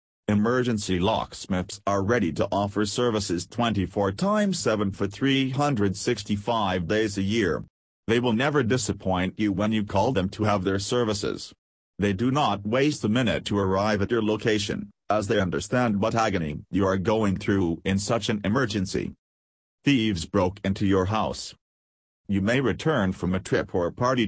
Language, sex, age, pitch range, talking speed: English, male, 40-59, 95-115 Hz, 160 wpm